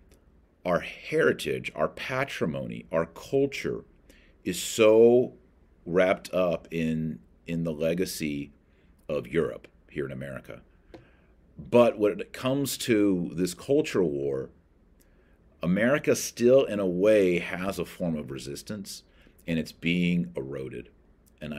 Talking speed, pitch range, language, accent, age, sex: 115 wpm, 75-100 Hz, English, American, 40-59, male